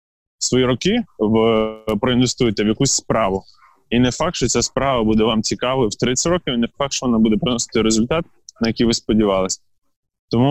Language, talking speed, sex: Ukrainian, 185 wpm, male